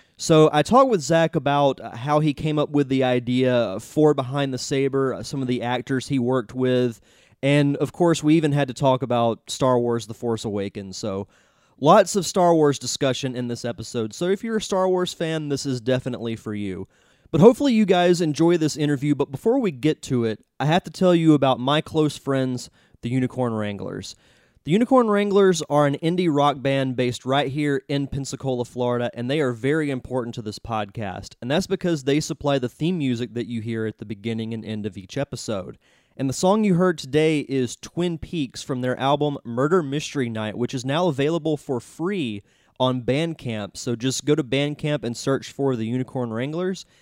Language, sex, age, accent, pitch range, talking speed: English, male, 30-49, American, 120-155 Hz, 205 wpm